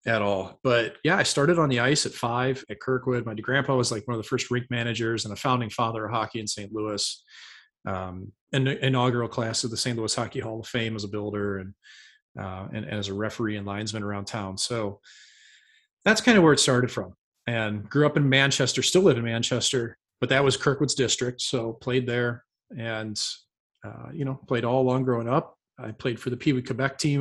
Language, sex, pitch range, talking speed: English, male, 110-135 Hz, 215 wpm